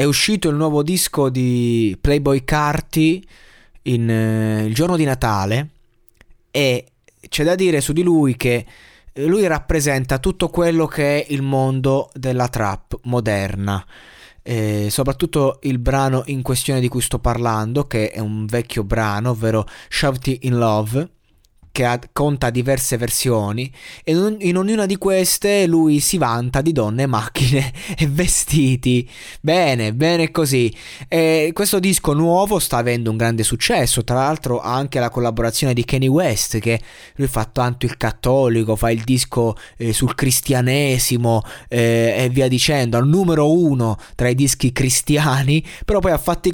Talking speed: 150 wpm